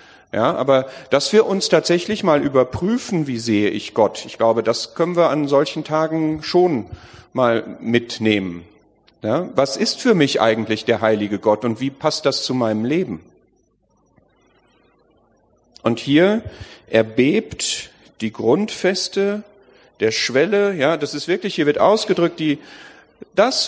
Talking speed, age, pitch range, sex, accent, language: 140 wpm, 40-59, 120-175 Hz, male, German, German